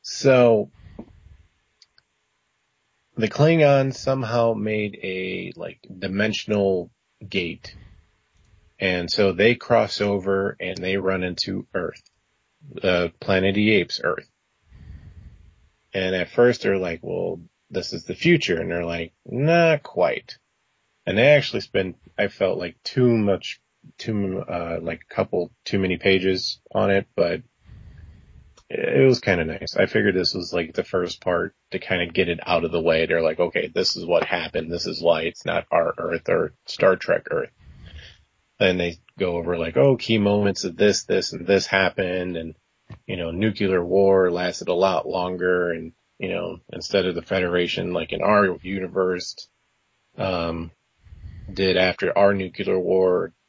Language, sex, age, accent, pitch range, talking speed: English, male, 30-49, American, 85-100 Hz, 155 wpm